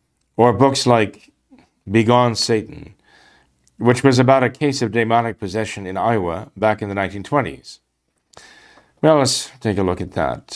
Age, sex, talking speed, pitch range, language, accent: 50-69, male, 150 wpm, 100-130 Hz, English, American